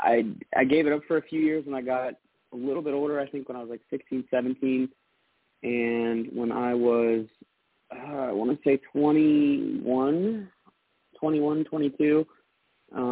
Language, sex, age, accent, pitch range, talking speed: English, male, 30-49, American, 120-155 Hz, 165 wpm